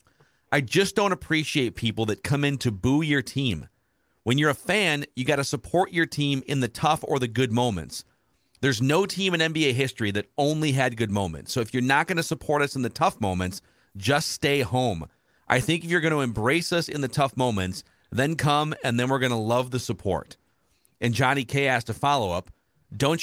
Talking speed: 215 wpm